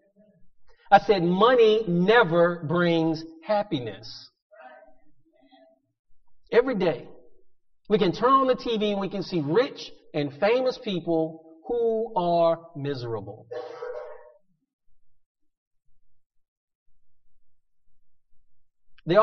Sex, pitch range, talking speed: male, 135-215 Hz, 80 wpm